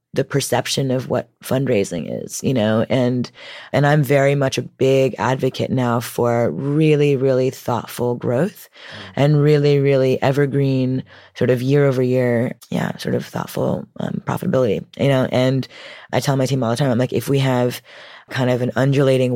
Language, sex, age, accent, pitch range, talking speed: English, female, 20-39, American, 125-135 Hz, 175 wpm